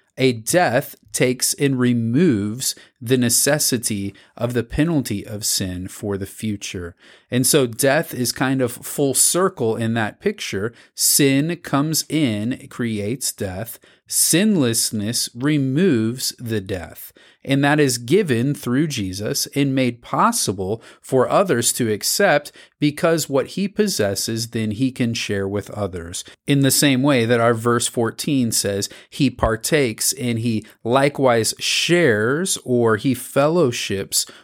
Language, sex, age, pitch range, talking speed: English, male, 30-49, 105-140 Hz, 130 wpm